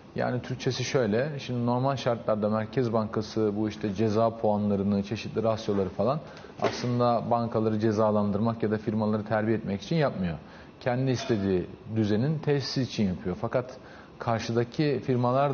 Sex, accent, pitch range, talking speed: male, native, 110-125 Hz, 130 wpm